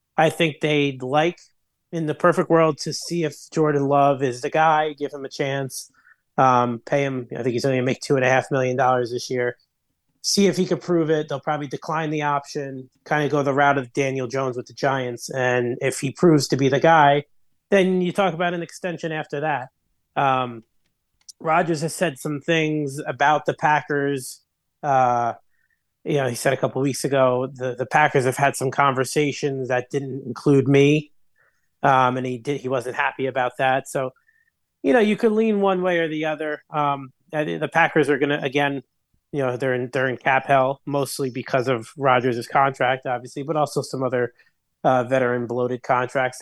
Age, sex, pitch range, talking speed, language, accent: 30-49, male, 130-150 Hz, 195 wpm, English, American